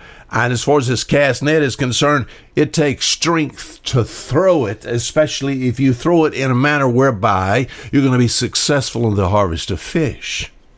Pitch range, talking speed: 105-140 Hz, 190 wpm